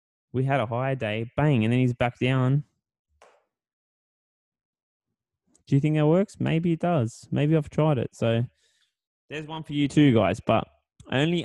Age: 20-39